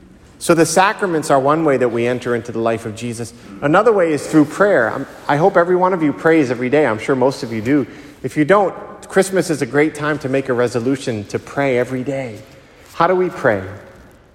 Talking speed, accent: 225 wpm, American